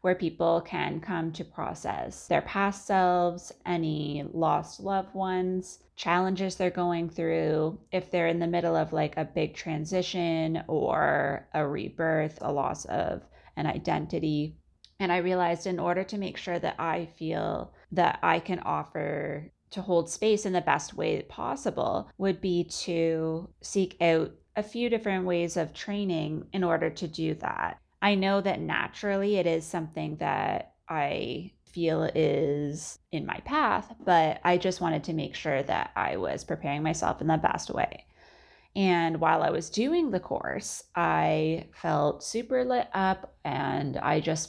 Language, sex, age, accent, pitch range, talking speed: English, female, 20-39, American, 160-190 Hz, 160 wpm